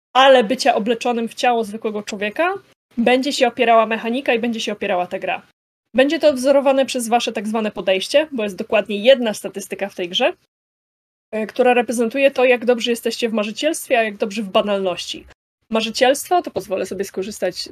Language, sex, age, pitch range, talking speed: Polish, female, 20-39, 210-265 Hz, 175 wpm